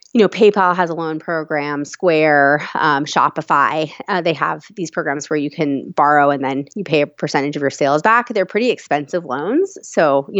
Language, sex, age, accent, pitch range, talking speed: English, female, 30-49, American, 150-190 Hz, 200 wpm